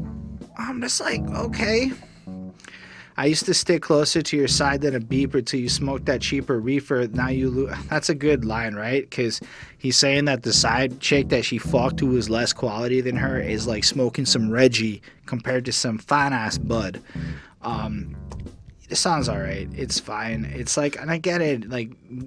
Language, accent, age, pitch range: English, American, 20-39, 125-170 Hz